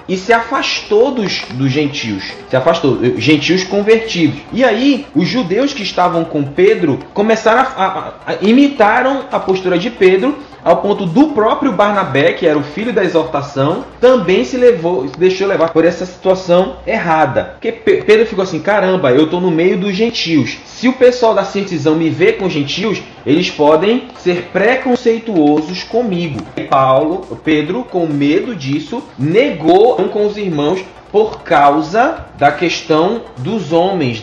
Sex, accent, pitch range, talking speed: male, Brazilian, 160-220 Hz, 155 wpm